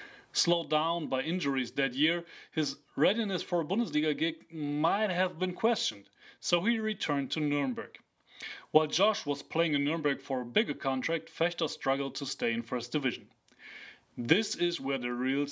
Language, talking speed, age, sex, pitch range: English, 165 wpm, 30-49, male, 135-180 Hz